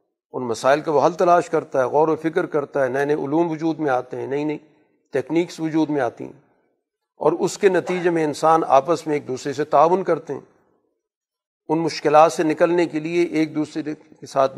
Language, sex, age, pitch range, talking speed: Urdu, male, 50-69, 140-170 Hz, 210 wpm